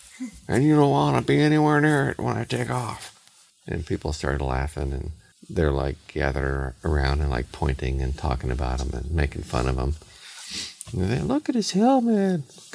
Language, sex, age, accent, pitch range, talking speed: English, male, 50-69, American, 70-100 Hz, 200 wpm